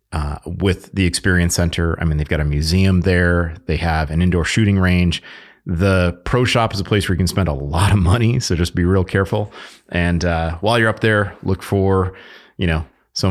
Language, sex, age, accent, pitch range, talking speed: English, male, 30-49, American, 80-100 Hz, 215 wpm